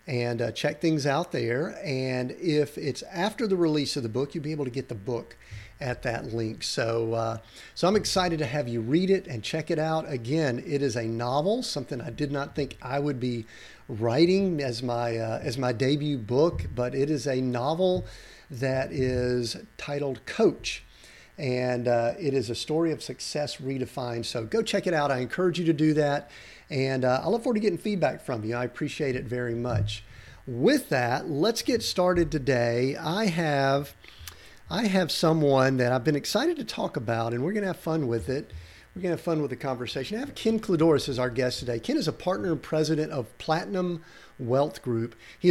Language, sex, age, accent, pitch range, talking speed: English, male, 50-69, American, 125-170 Hz, 205 wpm